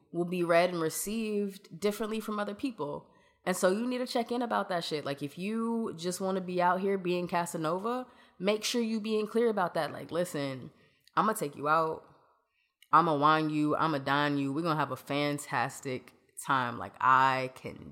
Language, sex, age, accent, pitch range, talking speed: English, female, 20-39, American, 130-180 Hz, 220 wpm